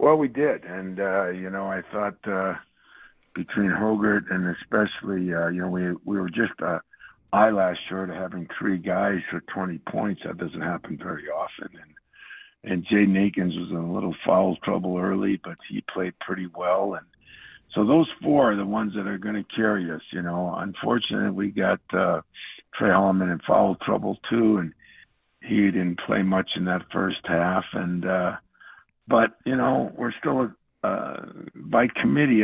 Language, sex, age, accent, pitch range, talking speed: English, male, 60-79, American, 90-105 Hz, 180 wpm